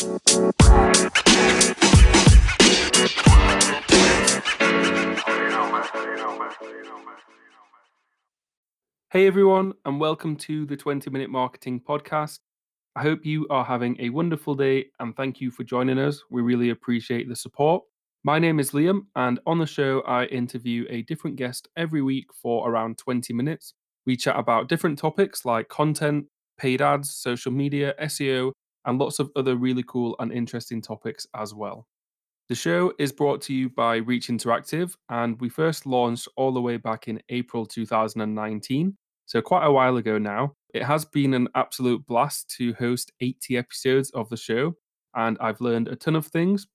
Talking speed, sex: 150 wpm, male